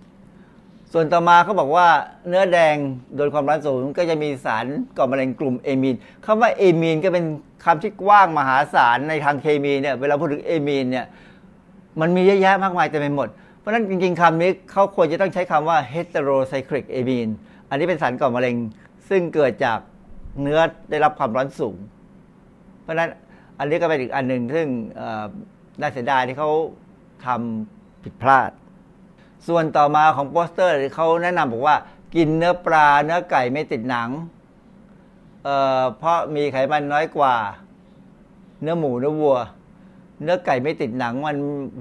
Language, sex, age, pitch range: Thai, male, 60-79, 140-185 Hz